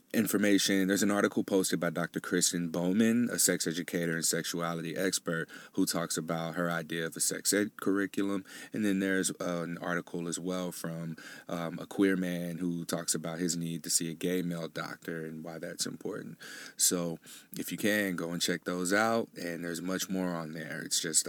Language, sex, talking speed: English, male, 195 wpm